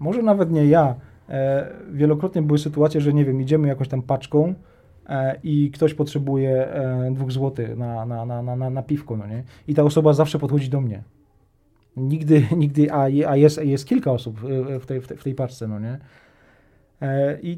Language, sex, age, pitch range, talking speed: Polish, male, 20-39, 135-165 Hz, 165 wpm